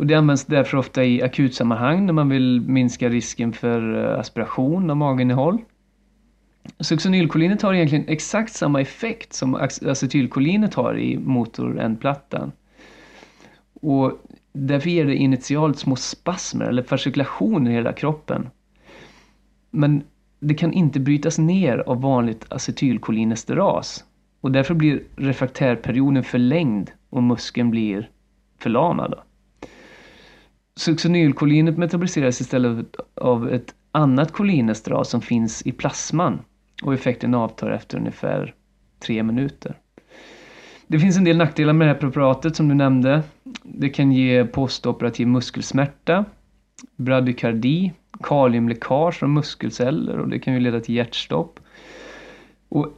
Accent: native